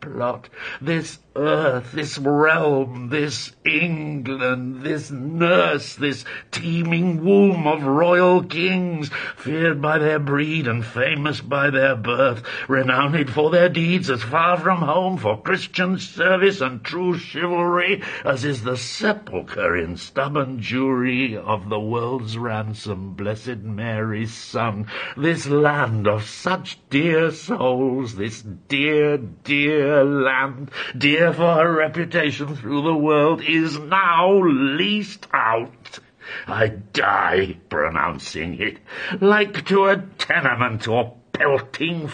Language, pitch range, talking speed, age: English, 115-160 Hz, 120 wpm, 60-79